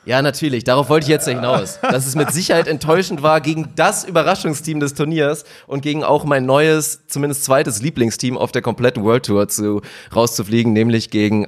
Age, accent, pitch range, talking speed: 30-49, German, 115-150 Hz, 190 wpm